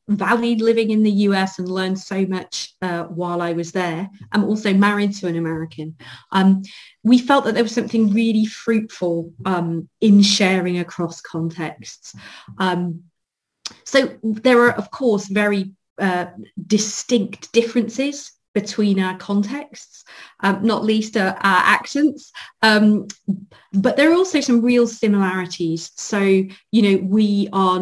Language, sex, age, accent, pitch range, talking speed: English, female, 30-49, British, 185-220 Hz, 140 wpm